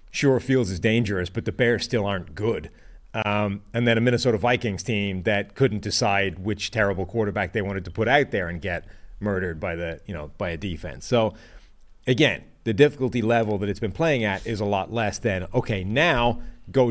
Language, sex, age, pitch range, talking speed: English, male, 30-49, 100-120 Hz, 200 wpm